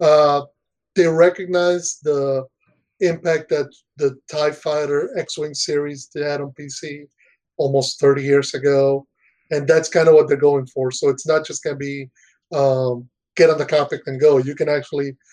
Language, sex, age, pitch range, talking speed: English, male, 30-49, 140-165 Hz, 165 wpm